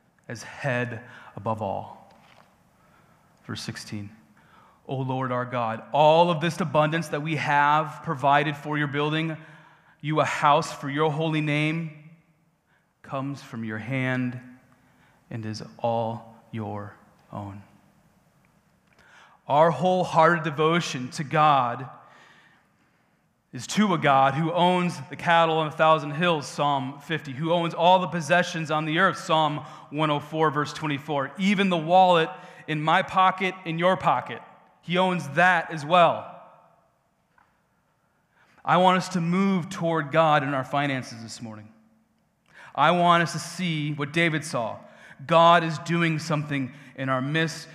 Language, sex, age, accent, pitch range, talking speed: English, male, 30-49, American, 135-165 Hz, 135 wpm